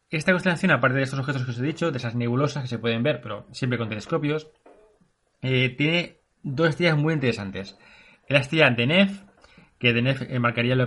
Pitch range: 125-165 Hz